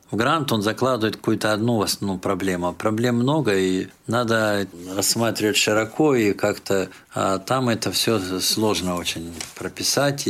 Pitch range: 100-120 Hz